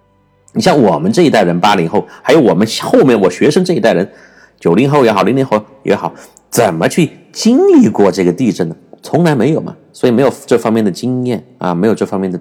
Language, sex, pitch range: Chinese, male, 95-140 Hz